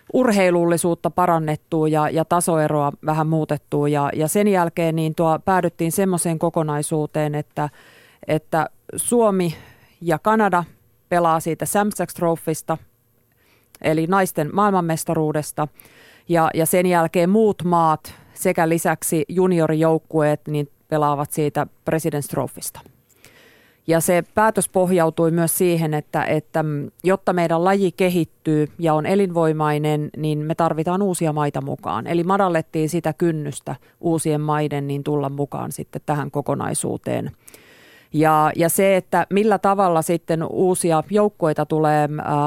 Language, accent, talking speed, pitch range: Finnish, native, 110 wpm, 150-175 Hz